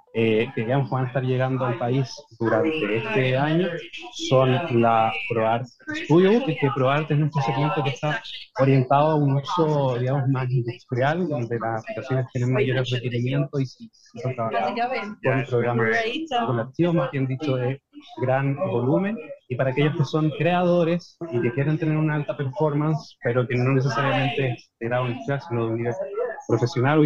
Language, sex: Spanish, male